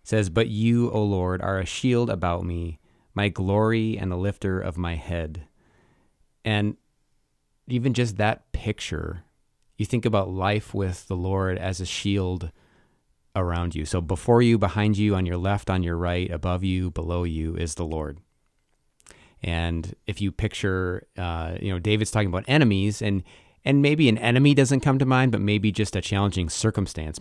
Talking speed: 175 wpm